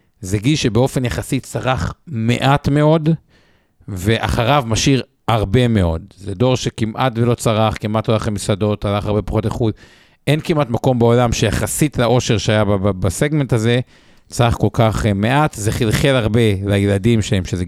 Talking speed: 145 wpm